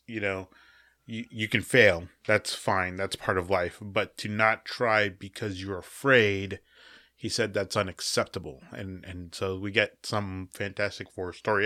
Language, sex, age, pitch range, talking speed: English, male, 20-39, 100-115 Hz, 165 wpm